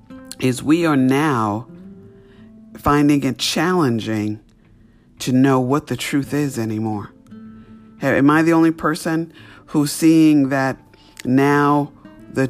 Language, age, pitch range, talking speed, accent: English, 50-69, 115-145 Hz, 115 wpm, American